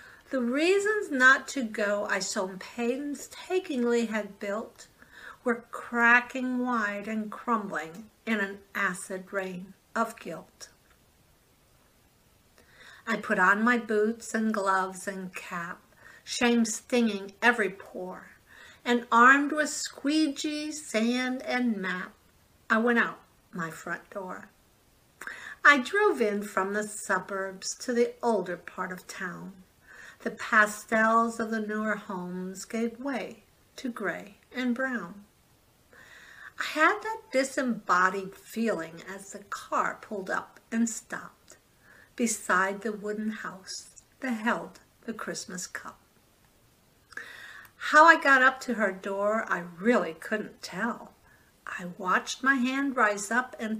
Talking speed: 125 wpm